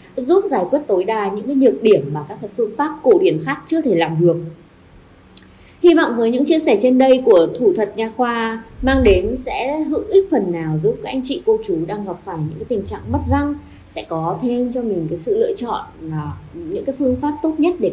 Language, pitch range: Vietnamese, 190-290 Hz